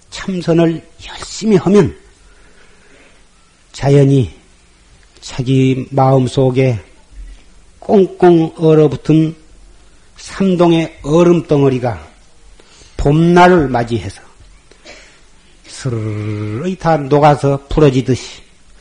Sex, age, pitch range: male, 40-59, 115-160 Hz